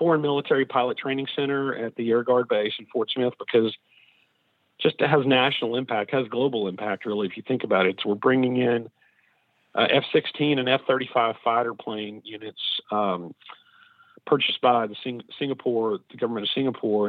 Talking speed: 165 wpm